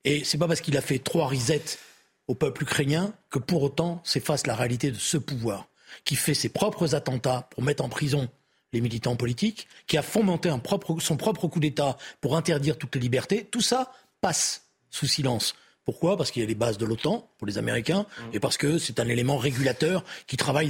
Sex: male